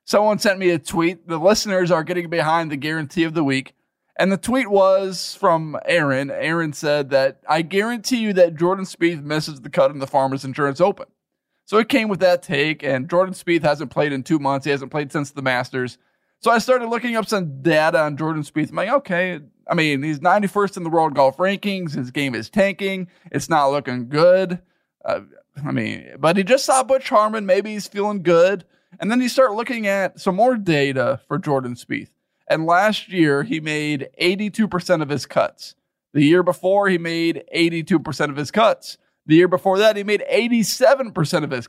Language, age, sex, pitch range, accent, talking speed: English, 20-39, male, 150-200 Hz, American, 200 wpm